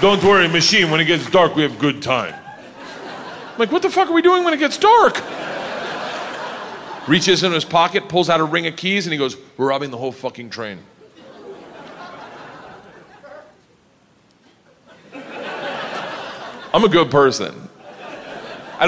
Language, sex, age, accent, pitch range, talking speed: English, male, 30-49, American, 130-190 Hz, 150 wpm